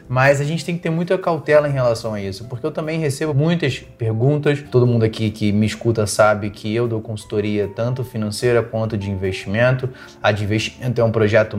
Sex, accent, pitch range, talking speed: male, Brazilian, 120-160 Hz, 205 wpm